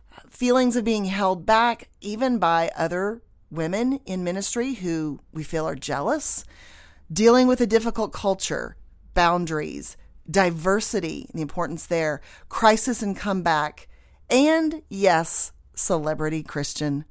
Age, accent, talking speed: 30-49, American, 115 wpm